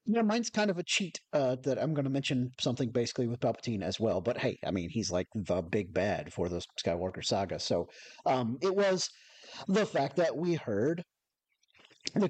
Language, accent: English, American